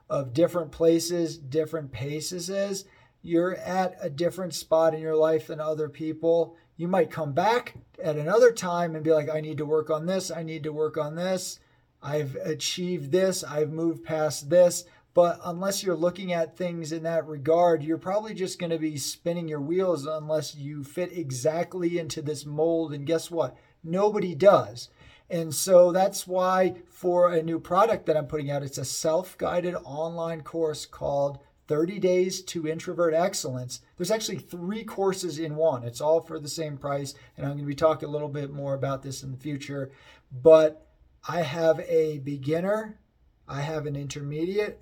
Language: English